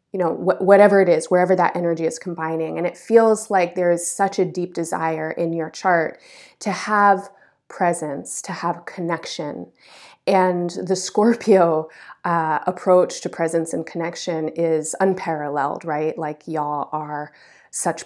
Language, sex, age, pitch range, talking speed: English, female, 30-49, 165-190 Hz, 150 wpm